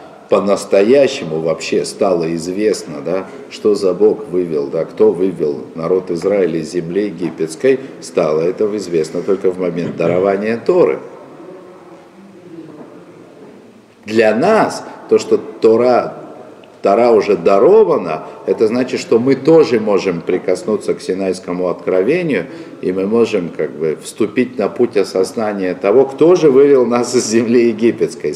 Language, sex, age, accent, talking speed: Russian, male, 50-69, native, 120 wpm